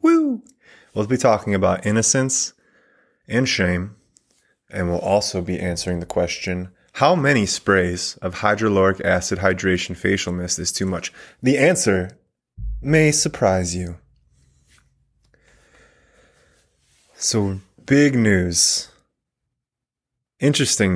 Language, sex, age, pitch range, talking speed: English, male, 20-39, 95-125 Hz, 100 wpm